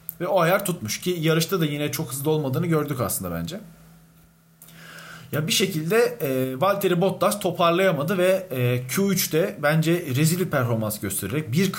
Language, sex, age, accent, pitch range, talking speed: Turkish, male, 40-59, native, 135-180 Hz, 145 wpm